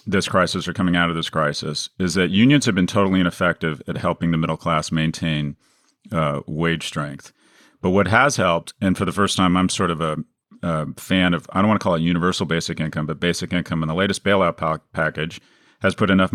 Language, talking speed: English, 220 wpm